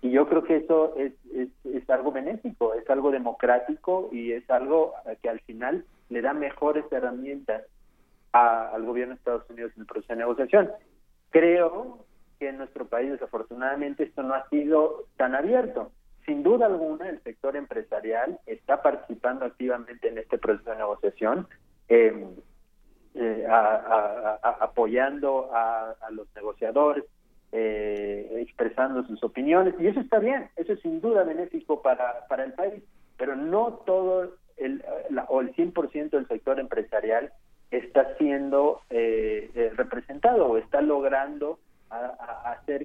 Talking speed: 140 wpm